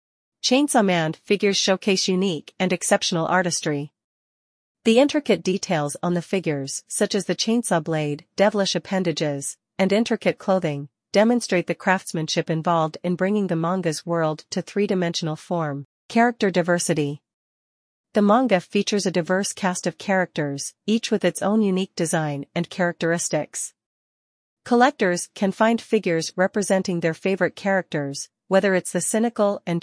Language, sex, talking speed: English, female, 135 wpm